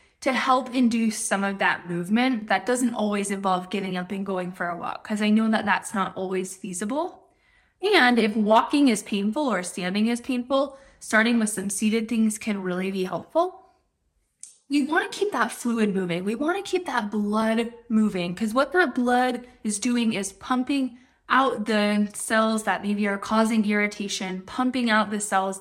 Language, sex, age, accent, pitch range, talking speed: English, female, 20-39, American, 205-255 Hz, 185 wpm